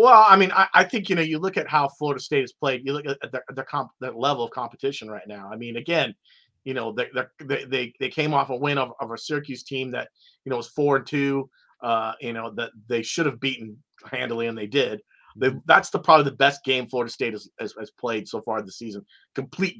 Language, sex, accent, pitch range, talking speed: English, male, American, 120-150 Hz, 235 wpm